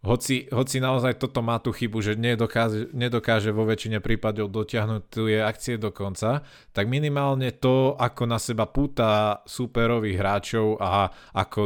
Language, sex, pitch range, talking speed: Slovak, male, 105-120 Hz, 150 wpm